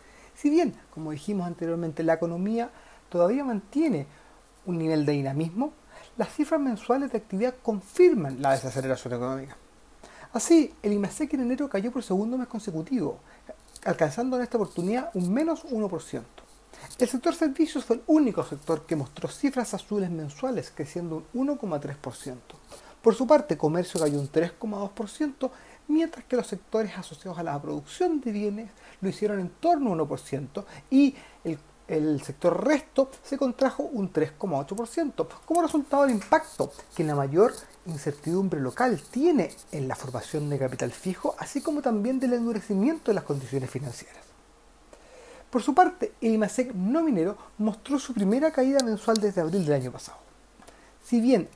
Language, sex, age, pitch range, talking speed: Spanish, male, 30-49, 165-260 Hz, 150 wpm